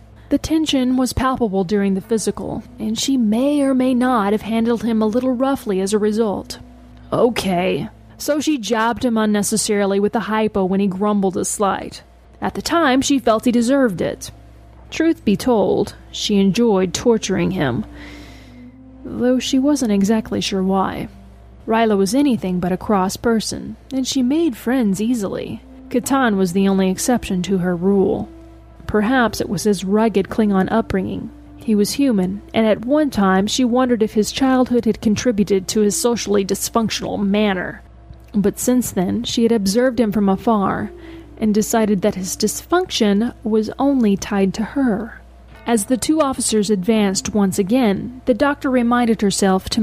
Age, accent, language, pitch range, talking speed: 30-49, American, English, 195-250 Hz, 160 wpm